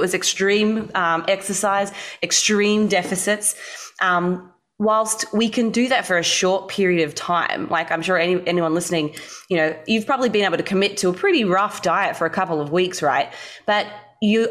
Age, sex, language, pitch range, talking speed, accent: 20-39, female, English, 165-195 Hz, 190 wpm, Australian